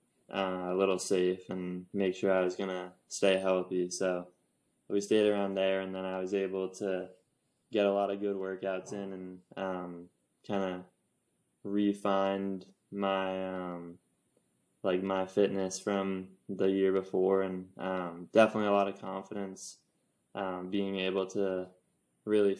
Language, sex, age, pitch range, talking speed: English, male, 10-29, 95-100 Hz, 150 wpm